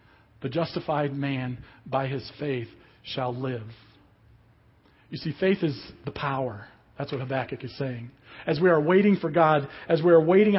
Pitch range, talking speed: 130-175 Hz, 165 wpm